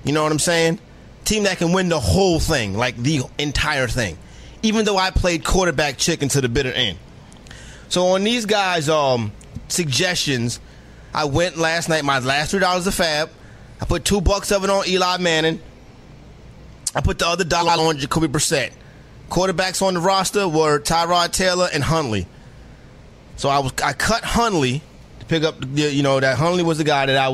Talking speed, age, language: 190 wpm, 30-49, English